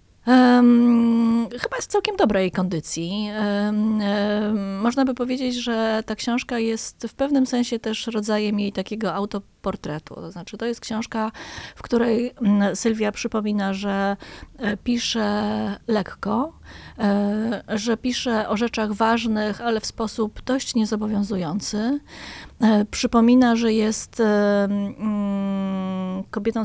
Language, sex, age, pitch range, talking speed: Polish, female, 20-39, 195-230 Hz, 105 wpm